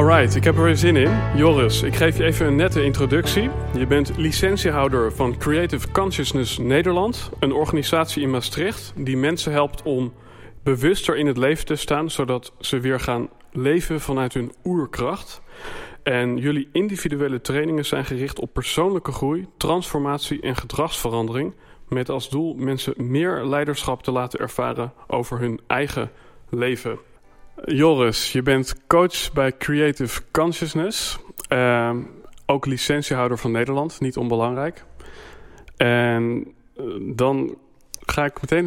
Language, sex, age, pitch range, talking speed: Dutch, male, 40-59, 120-150 Hz, 135 wpm